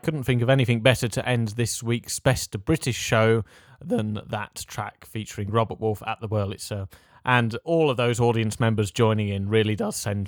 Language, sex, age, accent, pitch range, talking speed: English, male, 30-49, British, 105-135 Hz, 200 wpm